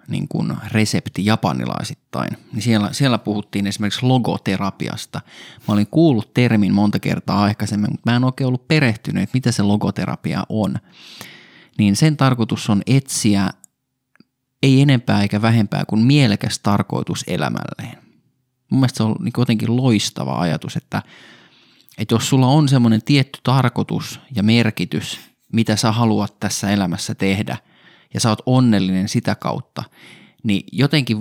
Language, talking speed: Finnish, 130 wpm